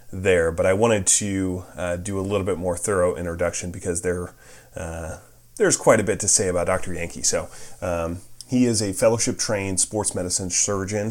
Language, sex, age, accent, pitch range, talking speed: English, male, 30-49, American, 90-115 Hz, 190 wpm